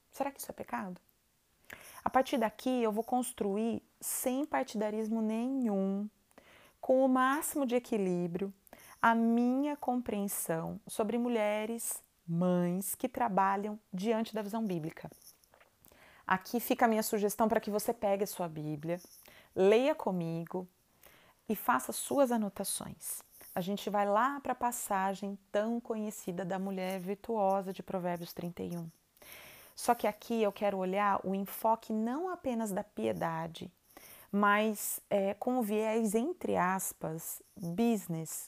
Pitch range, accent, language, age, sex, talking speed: 185-230 Hz, Brazilian, Portuguese, 30-49, female, 130 wpm